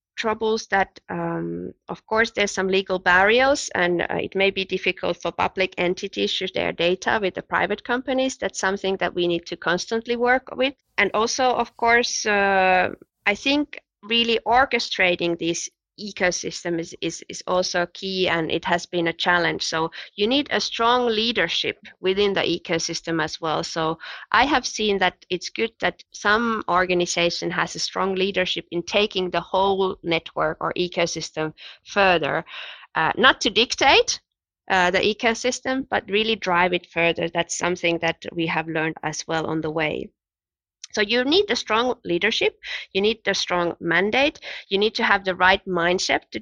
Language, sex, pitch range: Swedish, female, 175-225 Hz